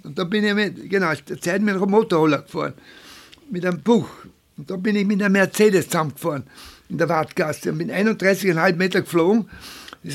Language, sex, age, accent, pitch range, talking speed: German, male, 60-79, German, 170-210 Hz, 170 wpm